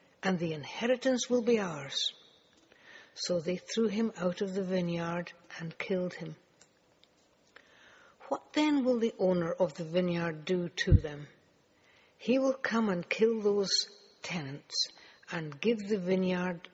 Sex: female